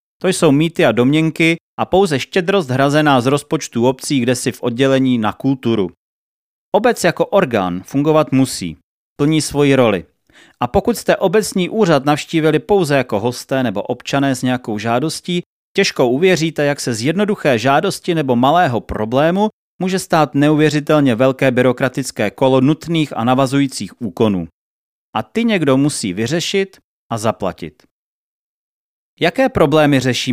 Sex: male